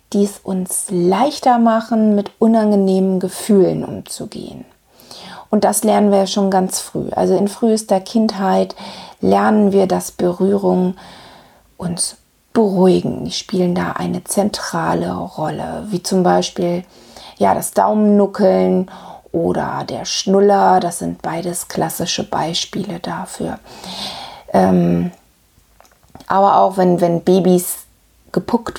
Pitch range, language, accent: 185-210 Hz, German, German